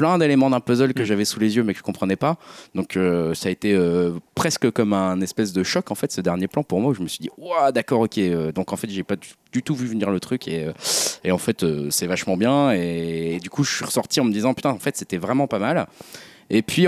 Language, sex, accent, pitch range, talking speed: French, male, French, 100-135 Hz, 280 wpm